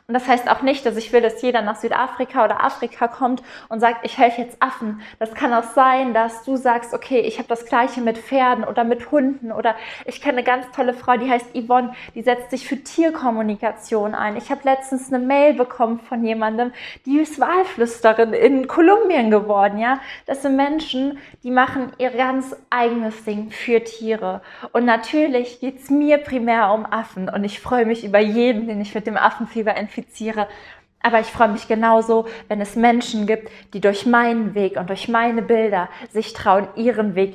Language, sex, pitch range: German, female, 215-250 Hz